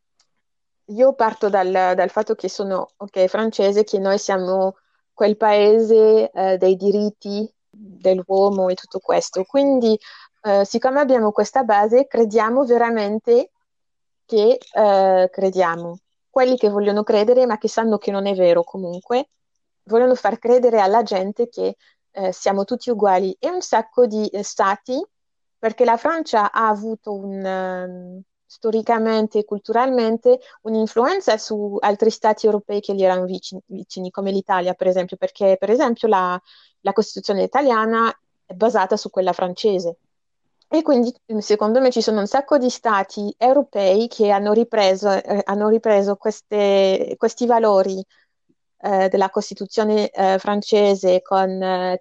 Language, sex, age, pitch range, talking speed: Italian, female, 30-49, 190-225 Hz, 140 wpm